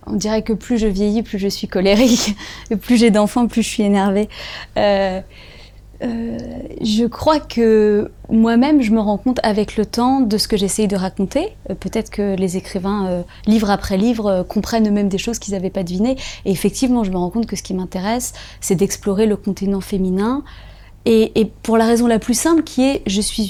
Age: 20-39